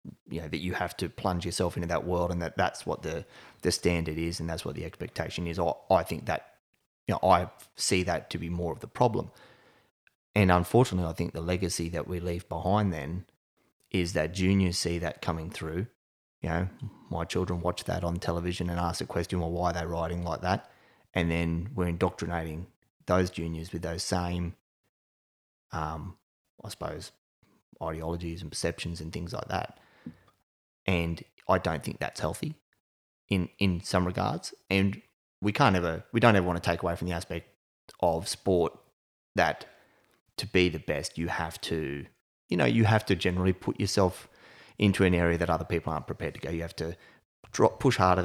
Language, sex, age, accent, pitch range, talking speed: English, male, 30-49, Australian, 85-95 Hz, 190 wpm